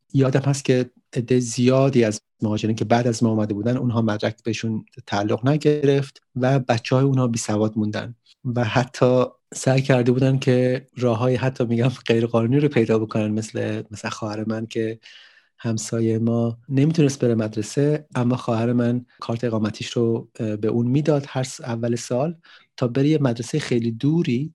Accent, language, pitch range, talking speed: Canadian, English, 110-125 Hz, 160 wpm